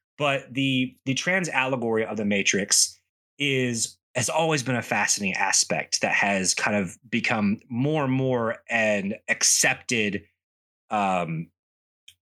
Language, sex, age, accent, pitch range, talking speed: English, male, 30-49, American, 100-140 Hz, 130 wpm